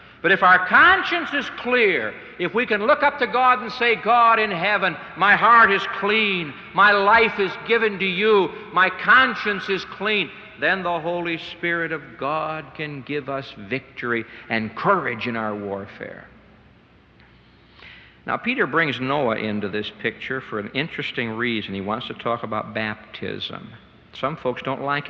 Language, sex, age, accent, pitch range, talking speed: English, male, 60-79, American, 125-205 Hz, 165 wpm